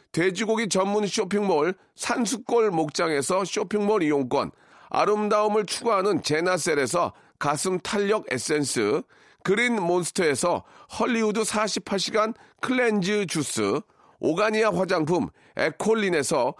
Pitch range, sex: 185-230 Hz, male